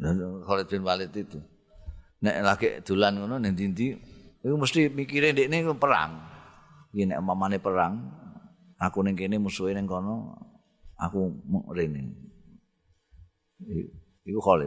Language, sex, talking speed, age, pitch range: Indonesian, male, 115 wpm, 50-69, 95-150 Hz